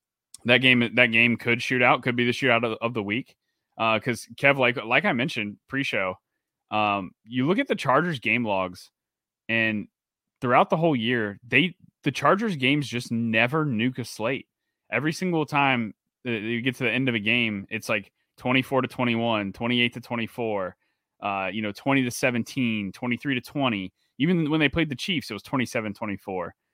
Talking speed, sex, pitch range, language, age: 185 wpm, male, 110-130 Hz, English, 20-39